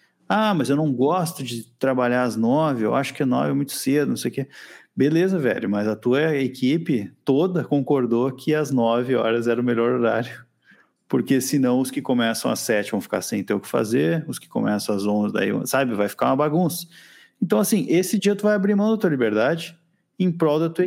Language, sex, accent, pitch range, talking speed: Portuguese, male, Brazilian, 125-170 Hz, 220 wpm